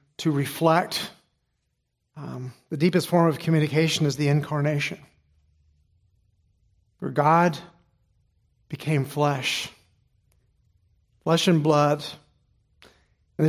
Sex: male